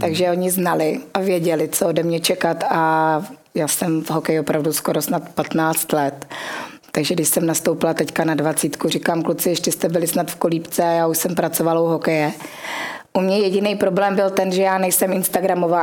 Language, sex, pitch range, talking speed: Czech, female, 155-180 Hz, 190 wpm